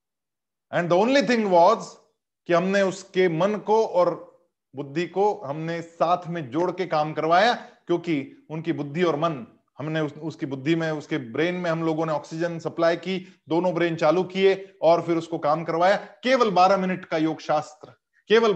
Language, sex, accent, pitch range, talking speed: Hindi, male, native, 165-220 Hz, 175 wpm